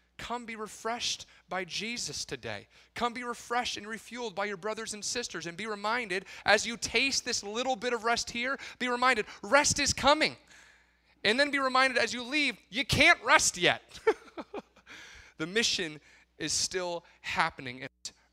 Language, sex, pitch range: English, male, 135-215 Hz